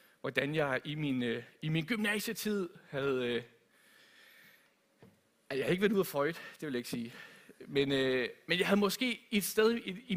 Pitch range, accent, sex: 145-205 Hz, native, male